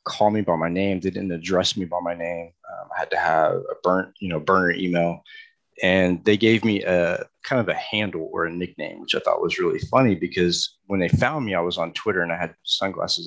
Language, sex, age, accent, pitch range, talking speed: English, male, 30-49, American, 90-110 Hz, 245 wpm